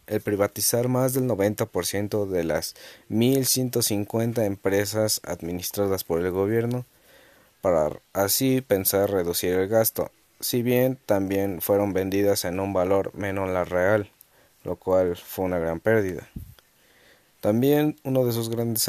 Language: Spanish